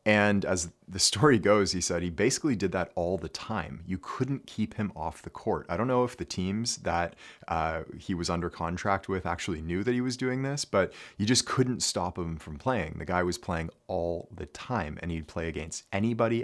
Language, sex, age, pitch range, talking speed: English, male, 30-49, 85-100 Hz, 225 wpm